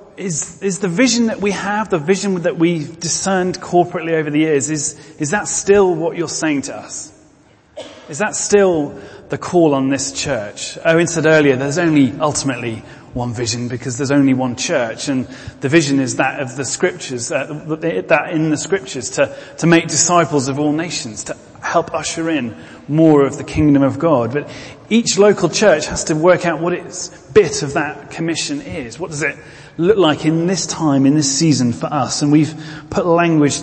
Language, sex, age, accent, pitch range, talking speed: English, male, 30-49, British, 135-170 Hz, 195 wpm